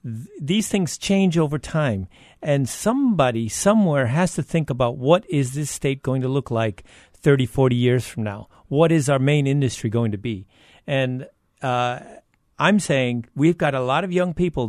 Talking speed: 180 wpm